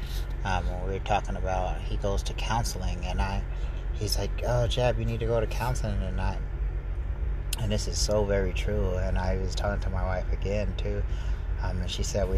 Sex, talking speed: male, 220 wpm